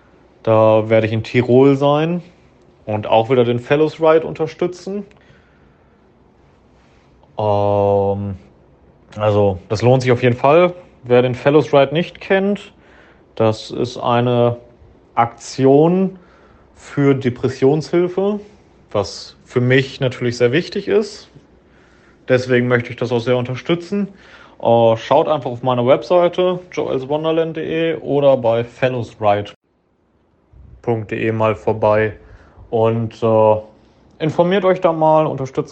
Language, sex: German, male